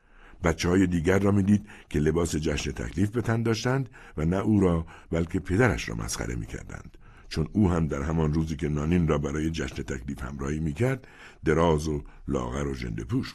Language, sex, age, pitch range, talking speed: Persian, male, 60-79, 75-95 Hz, 185 wpm